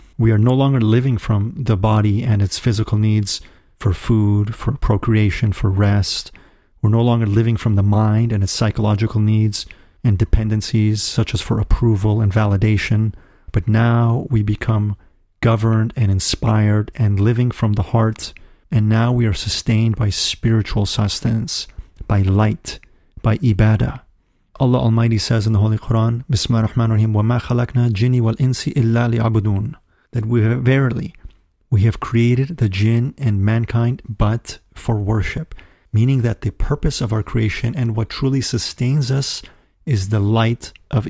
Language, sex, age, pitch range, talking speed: English, male, 40-59, 105-120 Hz, 150 wpm